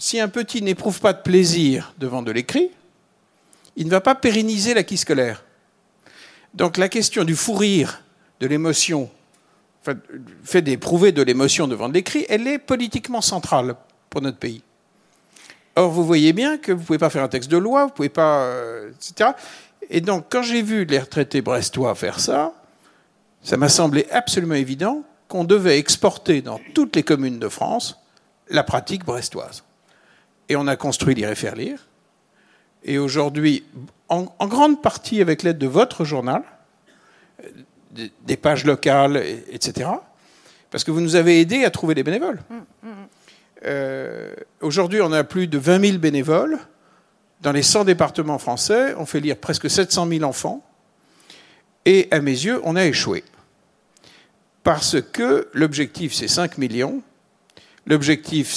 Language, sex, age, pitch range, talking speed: French, male, 60-79, 140-205 Hz, 160 wpm